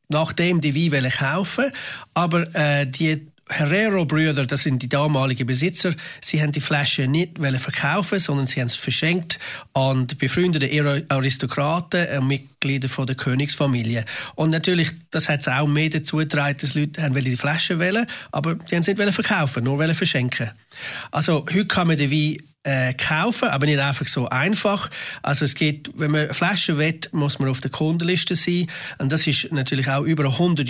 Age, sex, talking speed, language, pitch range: 30-49, male, 175 wpm, German, 140-175 Hz